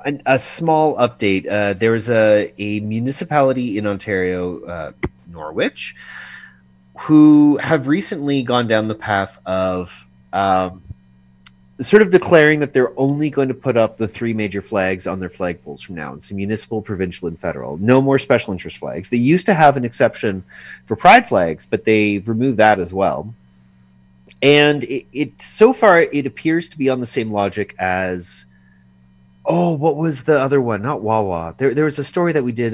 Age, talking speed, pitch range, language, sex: 30-49, 180 wpm, 90-135 Hz, English, male